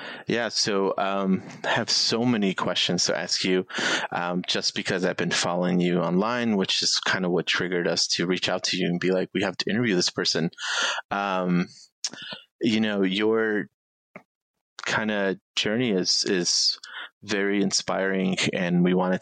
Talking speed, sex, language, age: 170 wpm, male, English, 30-49